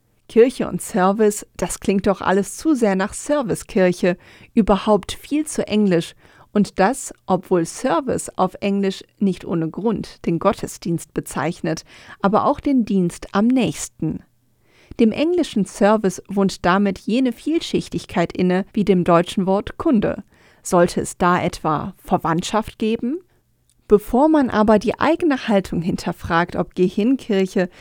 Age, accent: 40-59, German